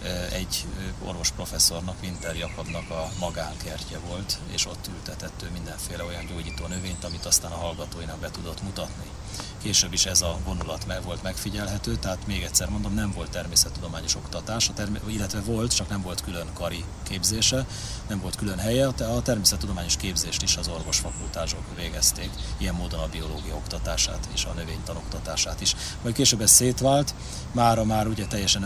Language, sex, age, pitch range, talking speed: Hungarian, male, 30-49, 85-105 Hz, 160 wpm